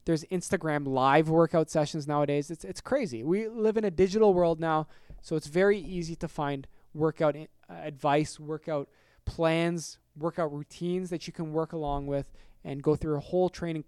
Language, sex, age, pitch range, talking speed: English, male, 20-39, 140-175 Hz, 175 wpm